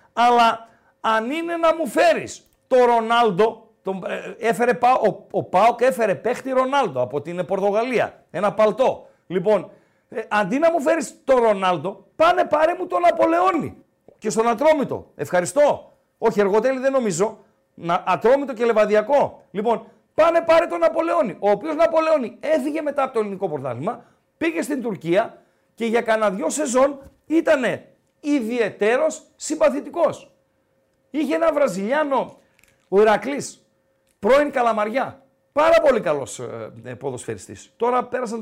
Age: 50-69